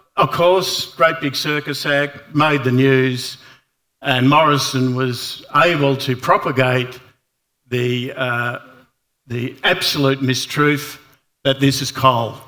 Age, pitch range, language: 50-69, 130-180 Hz, English